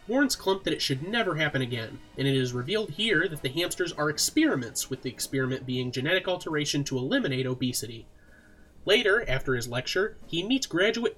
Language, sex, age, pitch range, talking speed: English, male, 30-49, 125-180 Hz, 180 wpm